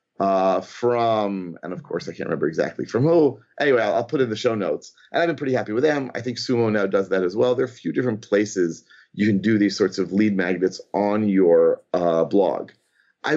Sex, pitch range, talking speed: male, 105-140 Hz, 240 wpm